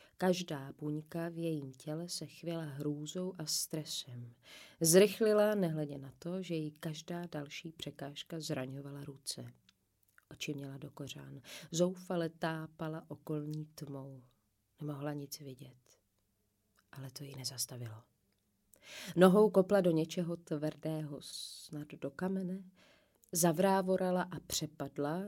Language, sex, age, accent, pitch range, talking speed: Czech, female, 30-49, native, 150-190 Hz, 110 wpm